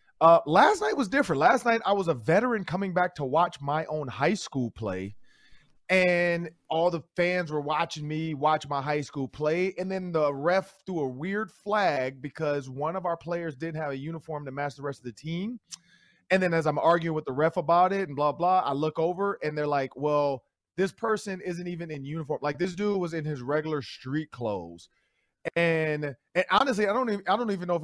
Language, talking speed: English, 220 wpm